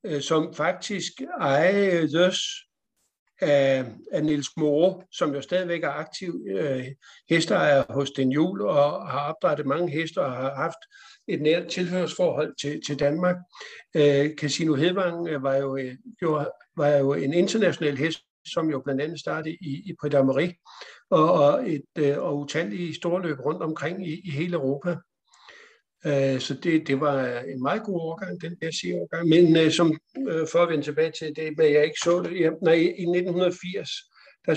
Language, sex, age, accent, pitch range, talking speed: Danish, male, 60-79, native, 145-175 Hz, 165 wpm